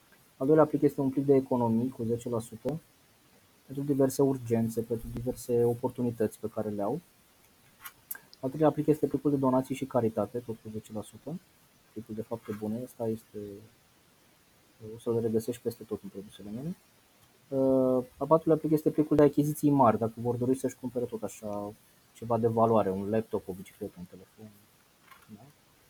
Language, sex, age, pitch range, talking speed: Romanian, male, 20-39, 115-145 Hz, 165 wpm